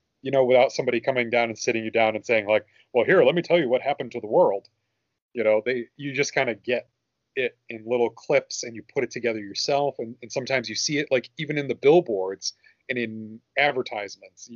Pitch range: 110-150 Hz